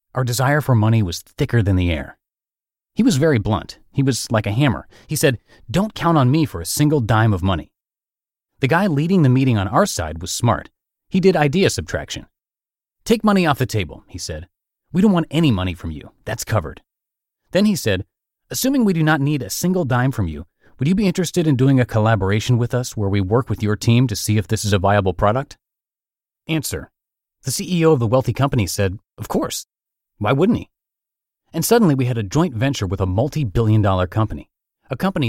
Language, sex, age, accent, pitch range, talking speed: English, male, 30-49, American, 100-155 Hz, 210 wpm